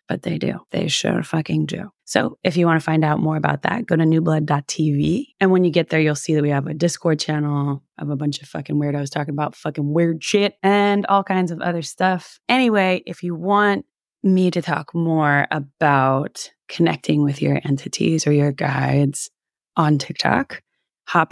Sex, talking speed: female, 195 wpm